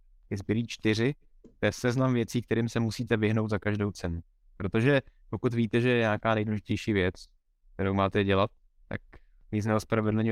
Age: 20-39